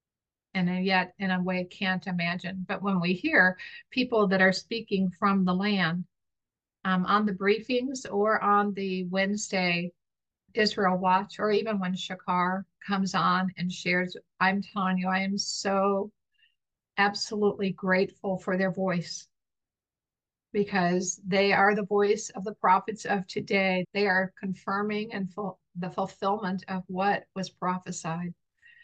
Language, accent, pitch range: English, American, 185-210 Hz